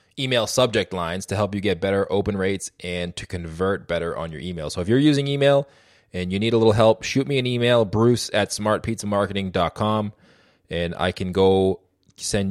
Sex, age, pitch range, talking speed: male, 20-39, 90-115 Hz, 190 wpm